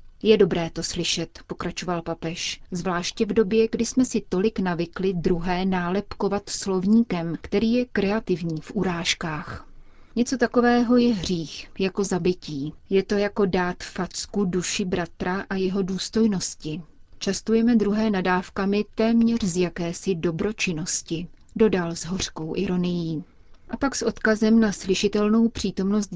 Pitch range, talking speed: 175-210 Hz, 130 wpm